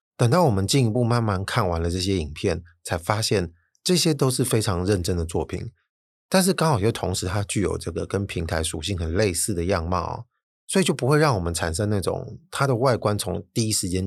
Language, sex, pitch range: Chinese, male, 90-120 Hz